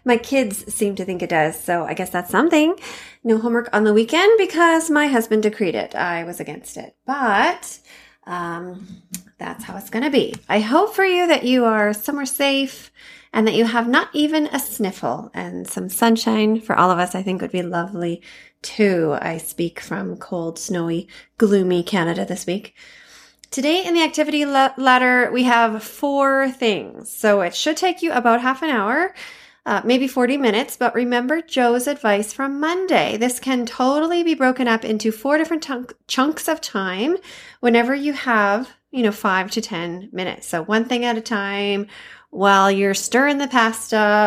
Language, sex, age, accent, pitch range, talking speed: English, female, 30-49, American, 195-270 Hz, 185 wpm